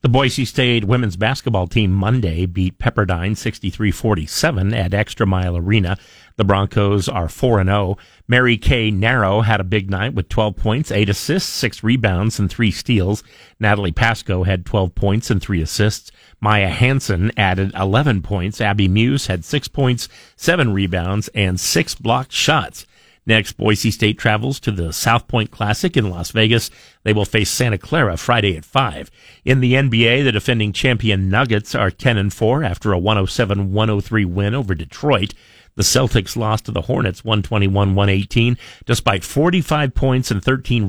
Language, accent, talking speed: English, American, 160 wpm